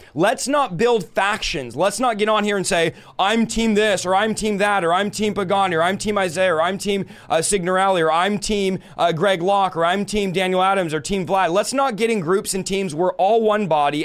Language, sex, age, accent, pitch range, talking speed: English, male, 30-49, American, 160-200 Hz, 240 wpm